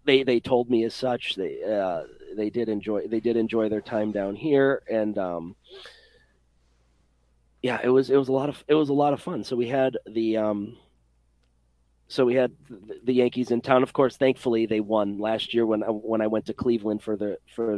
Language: English